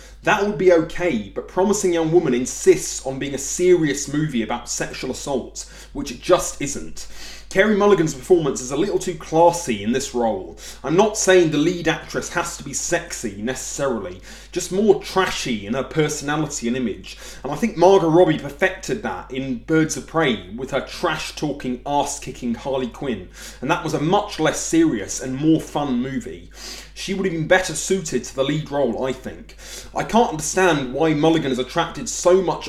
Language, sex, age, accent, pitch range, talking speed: English, male, 30-49, British, 135-180 Hz, 185 wpm